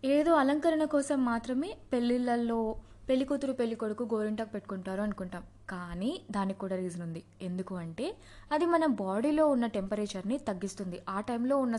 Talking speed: 130 wpm